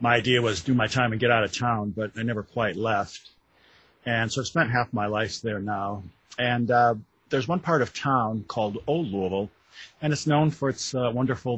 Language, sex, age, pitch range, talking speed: English, male, 50-69, 105-120 Hz, 220 wpm